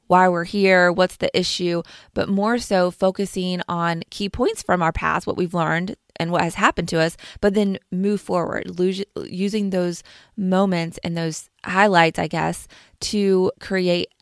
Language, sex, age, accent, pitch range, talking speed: English, female, 20-39, American, 170-200 Hz, 165 wpm